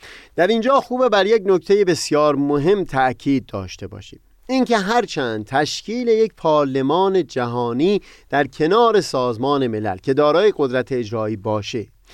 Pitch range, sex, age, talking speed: 125-185 Hz, male, 30-49, 130 wpm